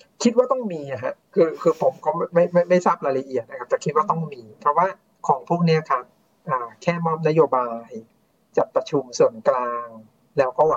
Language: Thai